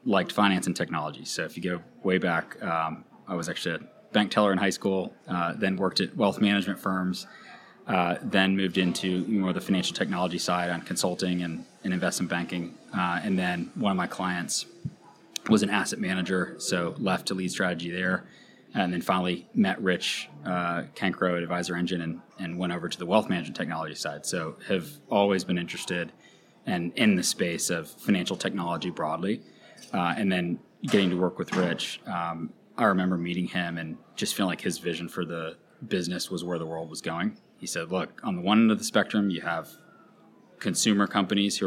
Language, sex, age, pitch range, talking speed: English, male, 20-39, 90-100 Hz, 195 wpm